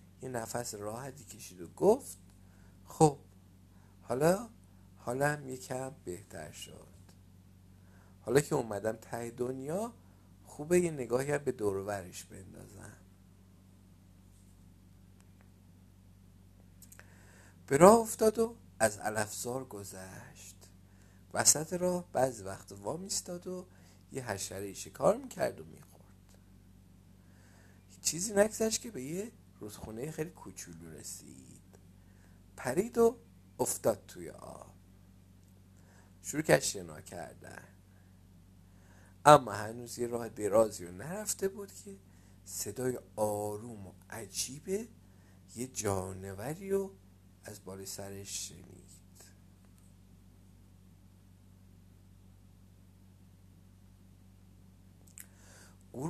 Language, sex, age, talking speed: Persian, male, 50-69, 85 wpm